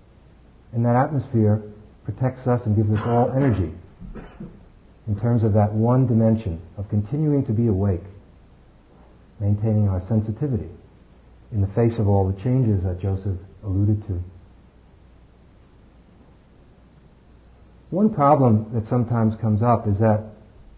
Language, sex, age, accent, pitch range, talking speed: English, male, 50-69, American, 100-115 Hz, 125 wpm